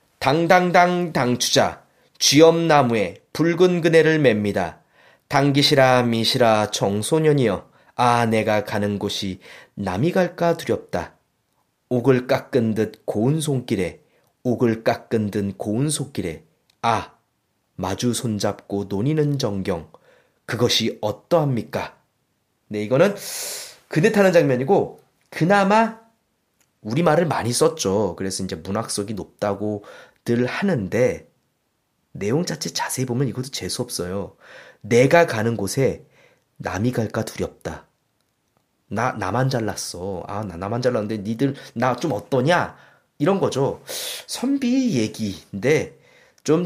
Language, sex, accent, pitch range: Korean, male, native, 105-160 Hz